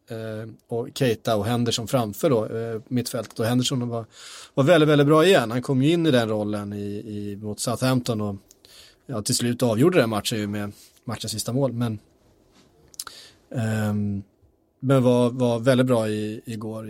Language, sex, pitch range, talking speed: Swedish, male, 115-135 Hz, 165 wpm